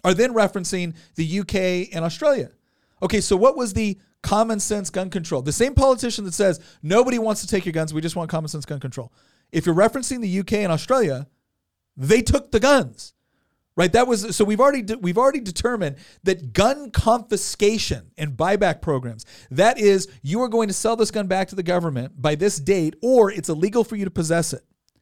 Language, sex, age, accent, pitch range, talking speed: English, male, 40-59, American, 160-215 Hz, 205 wpm